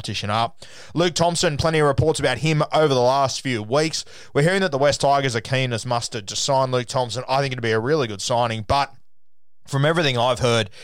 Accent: Australian